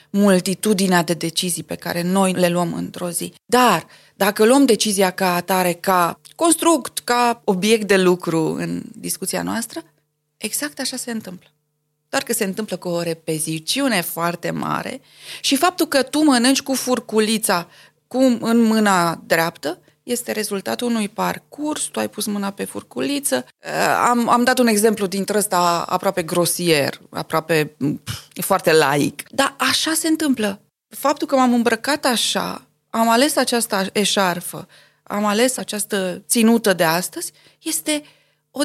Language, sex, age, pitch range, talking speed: Romanian, female, 20-39, 185-250 Hz, 140 wpm